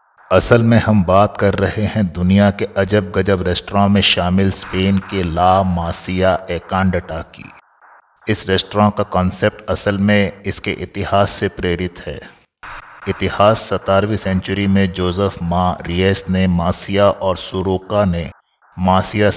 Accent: native